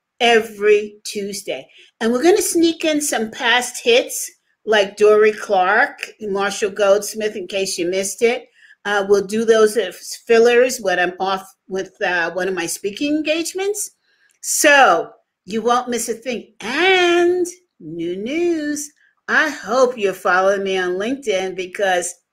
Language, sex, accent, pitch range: English, female, American, 190-275 Hz